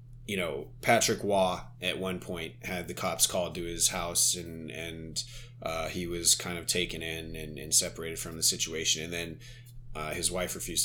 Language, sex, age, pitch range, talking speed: English, male, 30-49, 90-120 Hz, 195 wpm